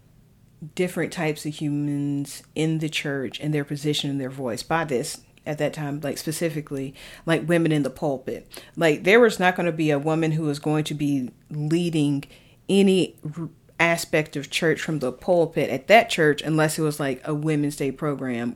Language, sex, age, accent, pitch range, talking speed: English, female, 30-49, American, 140-165 Hz, 190 wpm